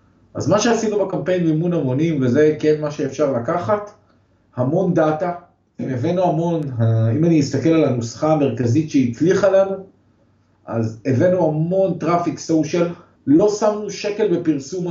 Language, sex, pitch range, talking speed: Hebrew, male, 120-170 Hz, 130 wpm